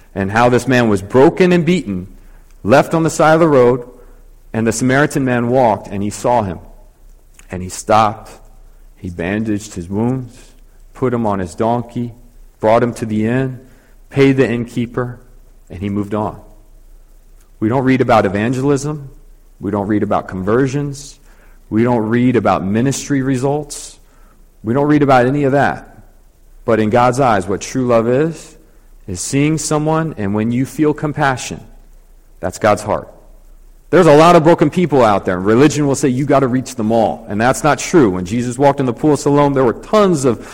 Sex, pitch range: male, 105-140 Hz